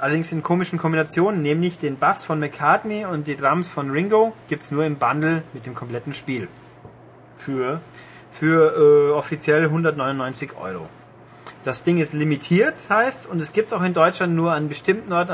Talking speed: 170 wpm